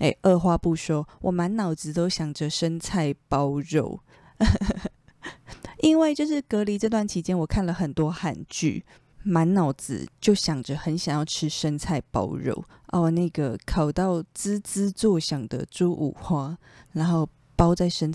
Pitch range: 150-190 Hz